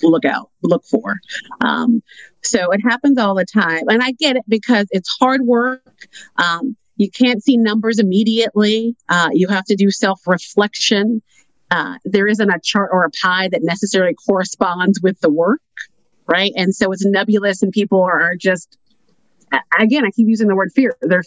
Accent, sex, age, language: American, female, 30-49, English